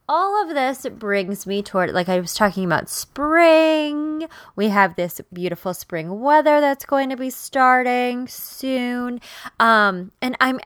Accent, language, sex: American, English, female